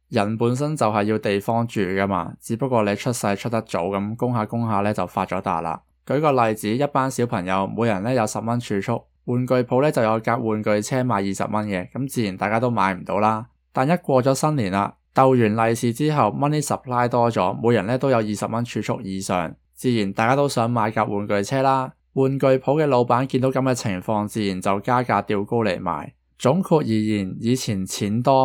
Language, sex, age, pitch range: Chinese, male, 20-39, 100-130 Hz